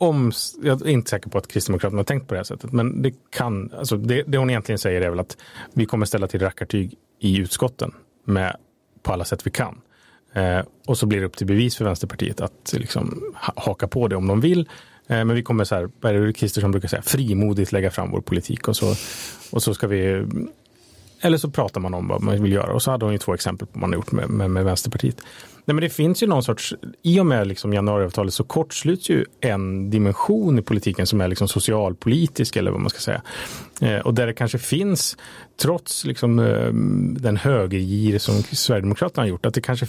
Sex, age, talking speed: male, 30-49, 215 wpm